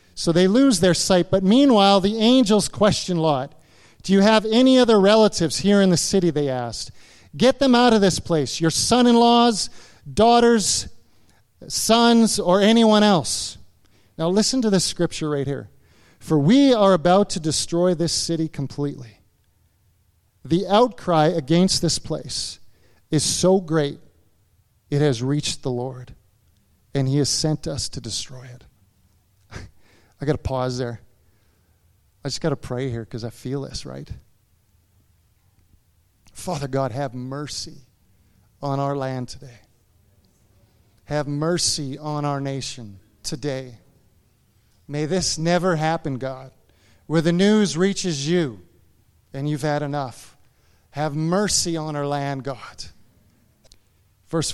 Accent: American